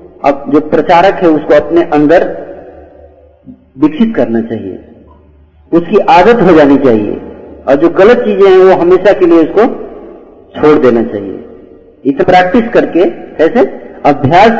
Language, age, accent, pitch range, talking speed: Hindi, 50-69, native, 135-185 Hz, 135 wpm